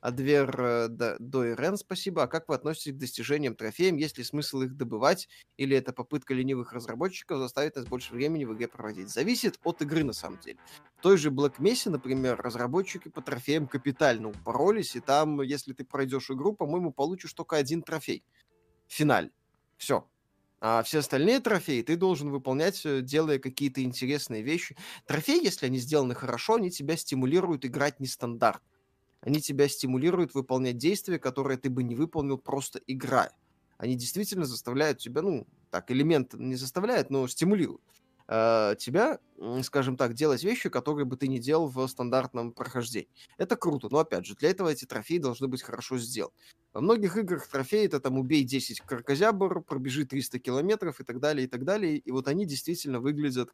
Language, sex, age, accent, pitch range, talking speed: Russian, male, 20-39, native, 125-160 Hz, 170 wpm